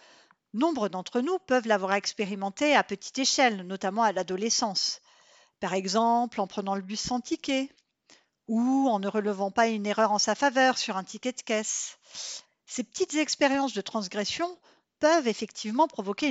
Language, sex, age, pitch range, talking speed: French, female, 50-69, 210-275 Hz, 160 wpm